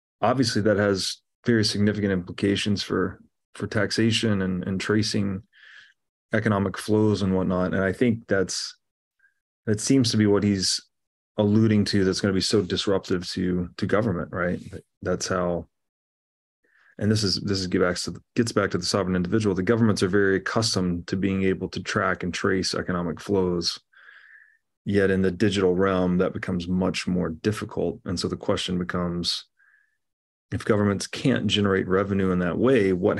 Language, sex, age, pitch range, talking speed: English, male, 30-49, 90-105 Hz, 170 wpm